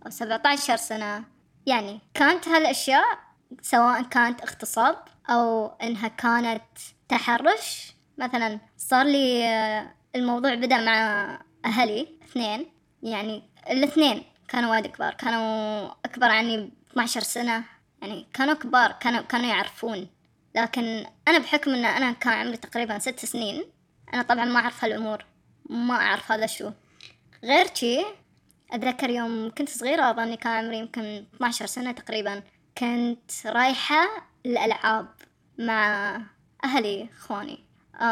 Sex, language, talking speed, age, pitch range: male, Arabic, 120 wpm, 20-39, 225-270 Hz